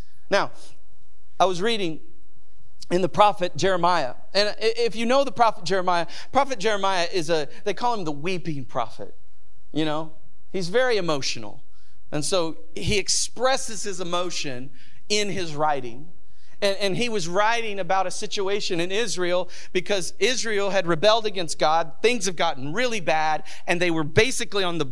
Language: English